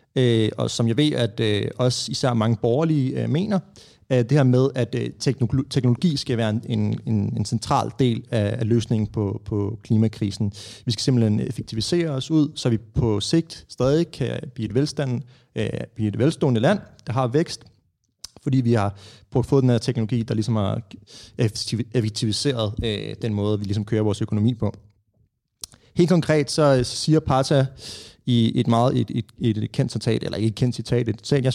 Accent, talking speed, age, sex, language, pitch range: native, 160 wpm, 30-49, male, Danish, 115-145 Hz